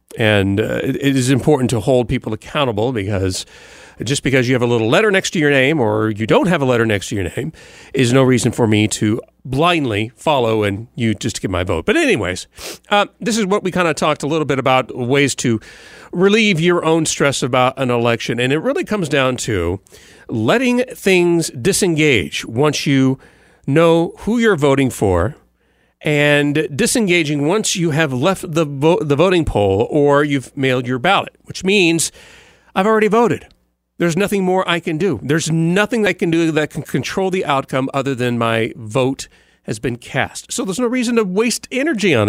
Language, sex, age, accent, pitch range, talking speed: English, male, 40-59, American, 125-180 Hz, 195 wpm